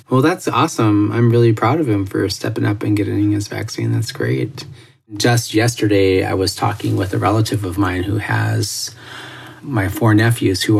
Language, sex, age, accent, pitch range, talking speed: English, male, 30-49, American, 100-115 Hz, 185 wpm